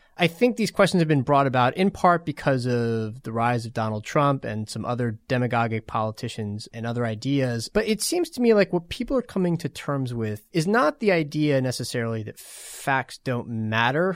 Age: 30-49